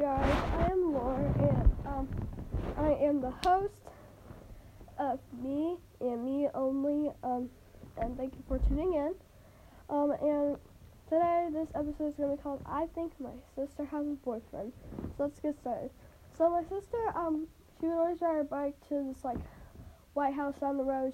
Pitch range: 275-320 Hz